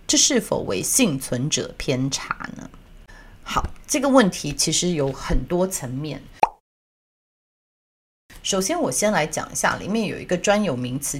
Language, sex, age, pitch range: Chinese, female, 30-49, 140-200 Hz